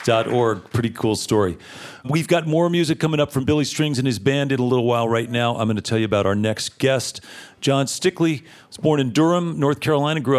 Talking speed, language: 230 wpm, English